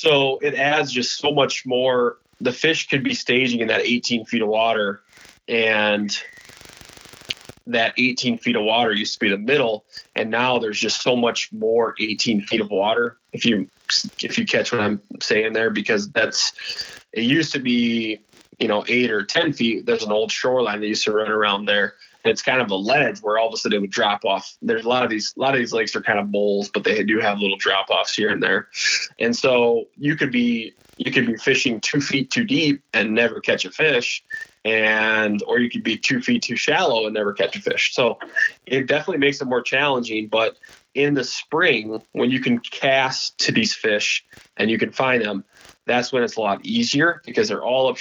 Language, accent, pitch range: English, American, 110-130 Hz